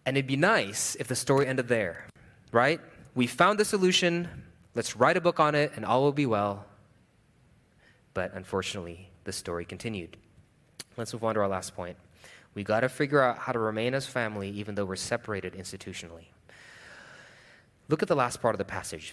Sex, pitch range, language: male, 100-160 Hz, English